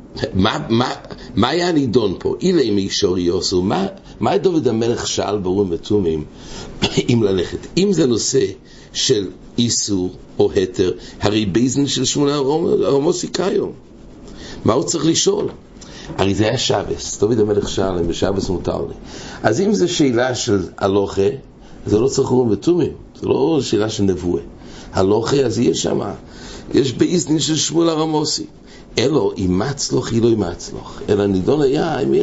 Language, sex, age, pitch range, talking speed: English, male, 60-79, 100-140 Hz, 150 wpm